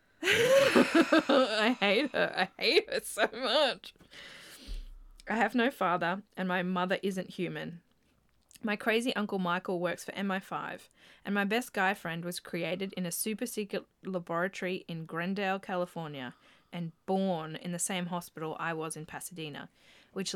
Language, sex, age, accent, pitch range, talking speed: English, female, 20-39, Australian, 175-230 Hz, 145 wpm